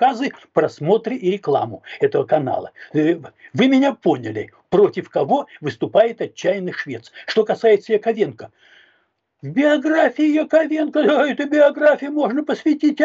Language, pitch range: Russian, 200-280 Hz